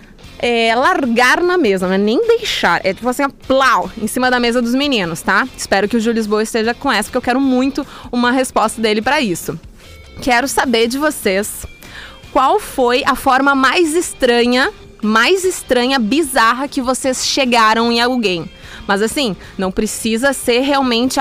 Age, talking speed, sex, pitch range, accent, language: 20-39, 170 wpm, female, 230-285 Hz, Brazilian, Portuguese